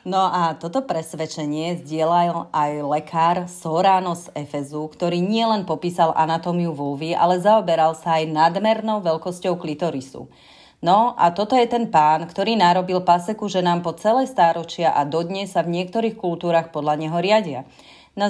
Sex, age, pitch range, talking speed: female, 30-49, 160-195 Hz, 150 wpm